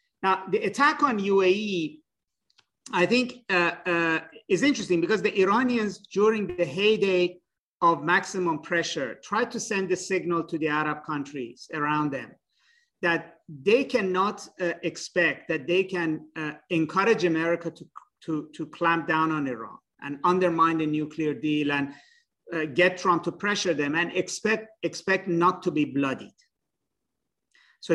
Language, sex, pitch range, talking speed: English, male, 160-195 Hz, 150 wpm